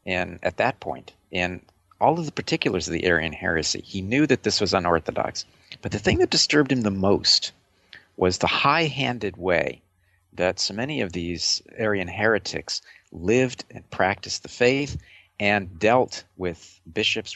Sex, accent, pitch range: male, American, 90-105 Hz